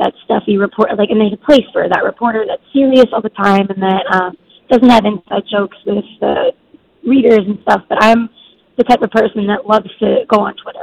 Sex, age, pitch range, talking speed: female, 20-39, 200-235 Hz, 220 wpm